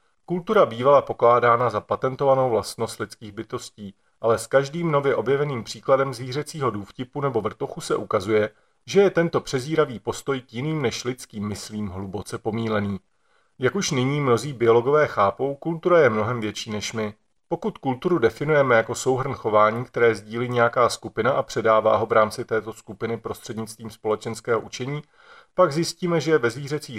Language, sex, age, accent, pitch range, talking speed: Czech, male, 40-59, native, 110-150 Hz, 155 wpm